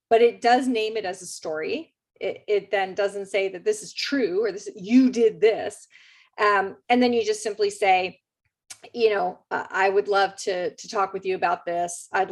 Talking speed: 210 wpm